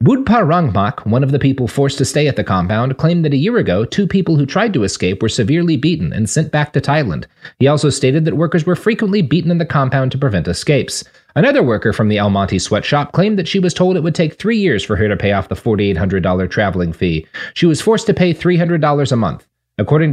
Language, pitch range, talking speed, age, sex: English, 110-165 Hz, 240 wpm, 30-49, male